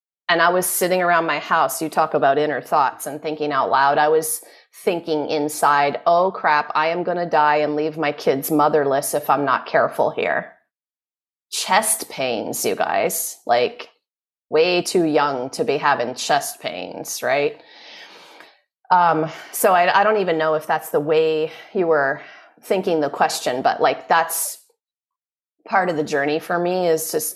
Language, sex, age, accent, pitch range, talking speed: English, female, 30-49, American, 155-220 Hz, 170 wpm